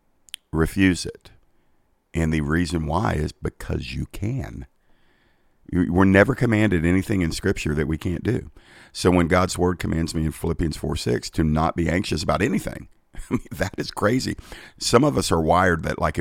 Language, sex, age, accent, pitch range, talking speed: English, male, 50-69, American, 75-90 Hz, 180 wpm